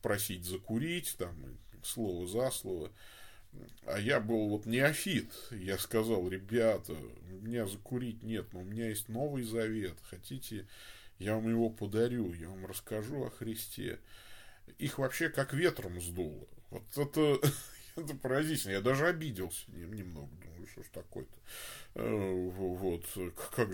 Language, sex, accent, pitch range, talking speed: Russian, male, native, 95-130 Hz, 135 wpm